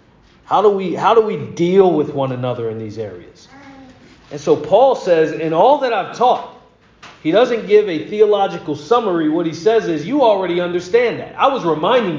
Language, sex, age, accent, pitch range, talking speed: English, male, 40-59, American, 145-200 Hz, 190 wpm